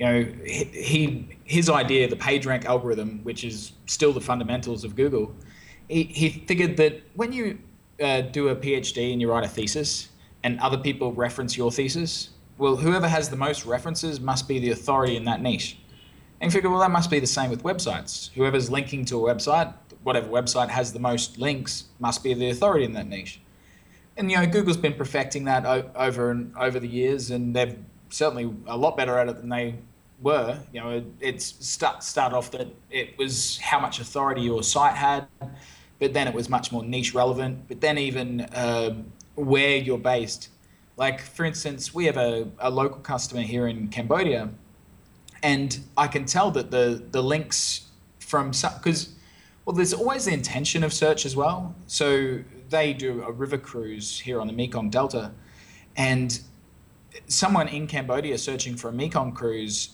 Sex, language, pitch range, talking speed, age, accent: male, English, 120-145 Hz, 180 wpm, 20-39, Australian